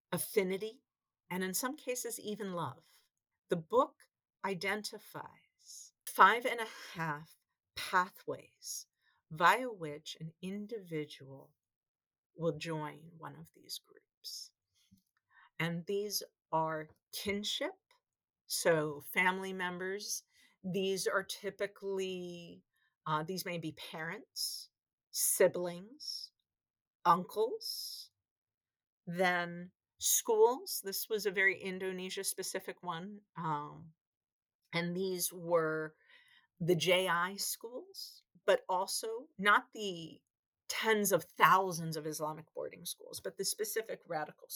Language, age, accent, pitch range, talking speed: English, 50-69, American, 155-215 Hz, 95 wpm